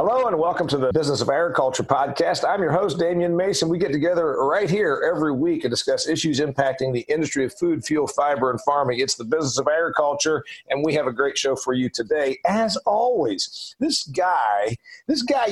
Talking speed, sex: 205 wpm, male